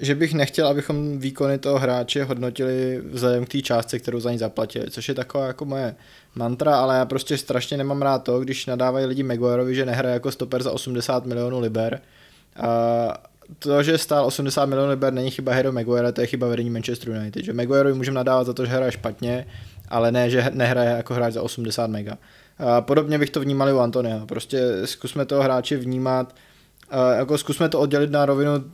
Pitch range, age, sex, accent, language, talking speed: 125-140 Hz, 20-39, male, native, Czech, 200 wpm